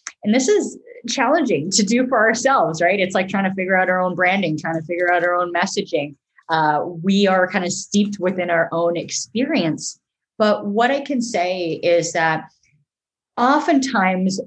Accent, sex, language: American, female, English